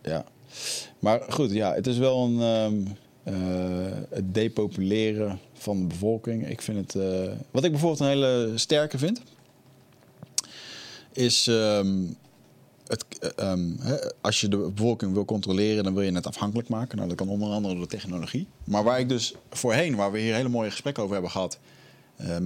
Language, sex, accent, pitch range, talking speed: Dutch, male, Dutch, 100-130 Hz, 175 wpm